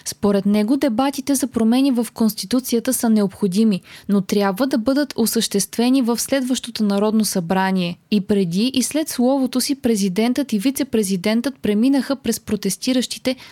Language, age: Bulgarian, 20-39